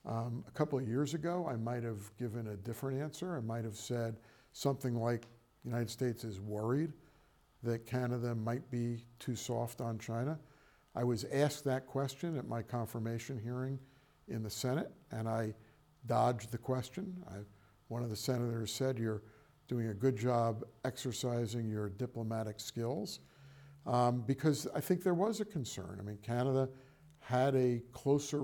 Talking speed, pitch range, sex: 160 wpm, 115-130 Hz, male